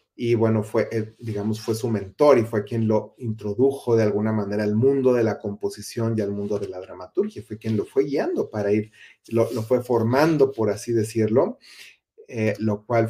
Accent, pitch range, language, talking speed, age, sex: Mexican, 110-135 Hz, Spanish, 200 wpm, 30-49, male